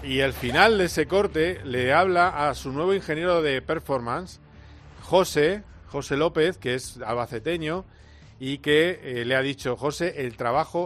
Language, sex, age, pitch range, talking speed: Spanish, male, 40-59, 125-165 Hz, 160 wpm